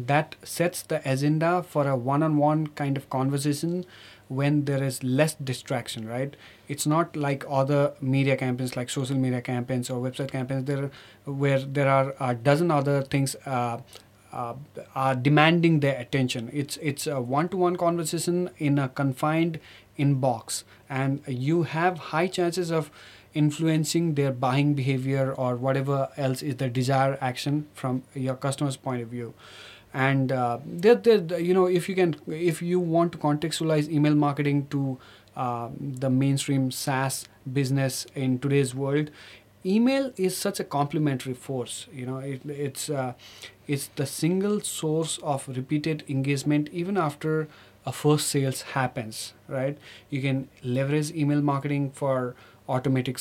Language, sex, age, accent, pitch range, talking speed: English, male, 30-49, Indian, 130-150 Hz, 150 wpm